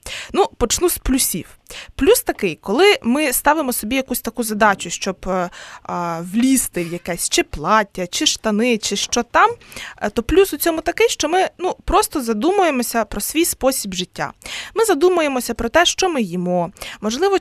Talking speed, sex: 155 wpm, female